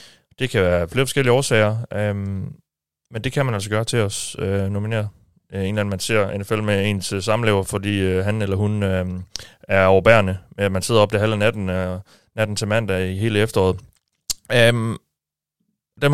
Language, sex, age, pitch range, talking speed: Danish, male, 30-49, 95-120 Hz, 190 wpm